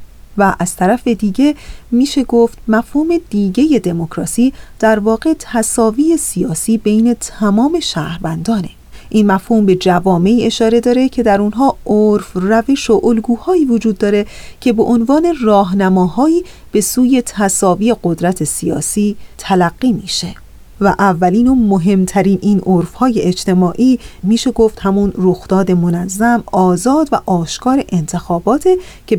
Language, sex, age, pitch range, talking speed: Persian, female, 40-59, 185-245 Hz, 120 wpm